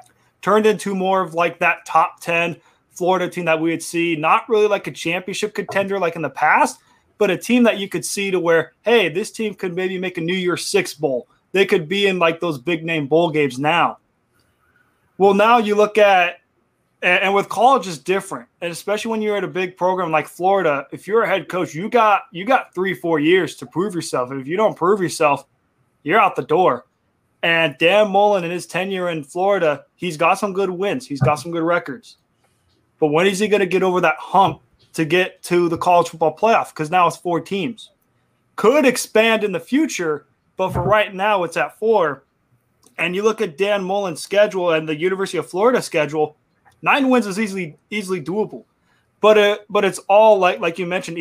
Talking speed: 210 wpm